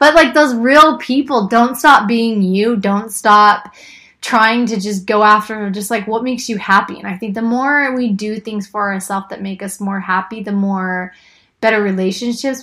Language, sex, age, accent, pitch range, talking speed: English, female, 20-39, American, 195-230 Hz, 195 wpm